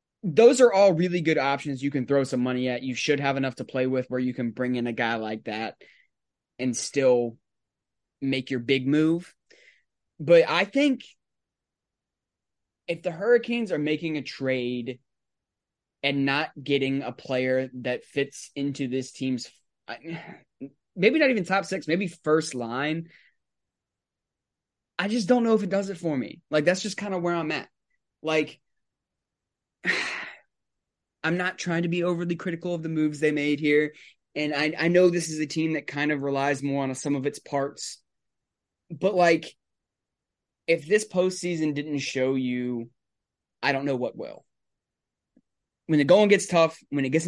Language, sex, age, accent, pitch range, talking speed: English, male, 20-39, American, 130-175 Hz, 170 wpm